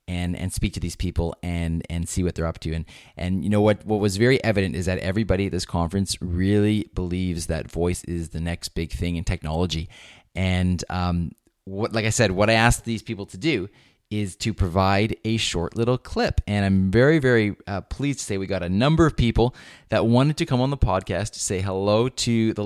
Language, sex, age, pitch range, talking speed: English, male, 20-39, 90-115 Hz, 225 wpm